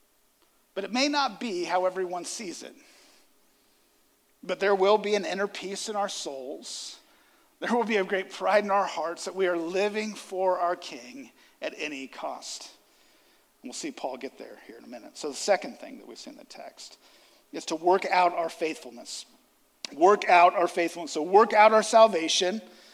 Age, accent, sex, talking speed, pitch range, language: 50-69, American, male, 190 wpm, 180-240 Hz, English